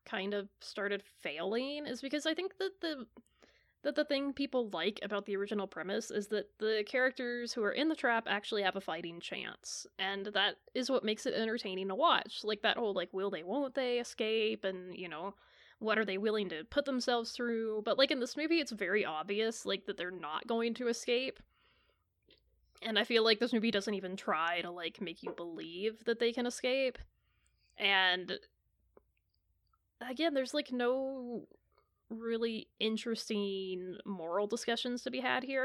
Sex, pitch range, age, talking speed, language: female, 200-255 Hz, 20-39, 180 wpm, English